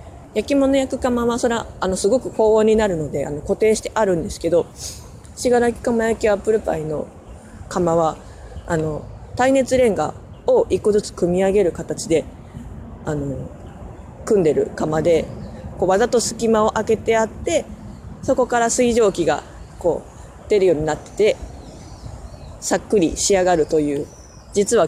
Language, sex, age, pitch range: Japanese, female, 20-39, 165-235 Hz